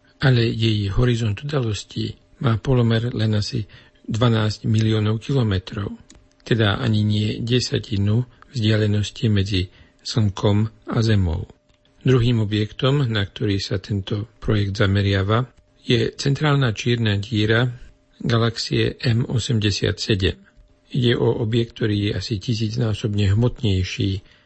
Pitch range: 105-120 Hz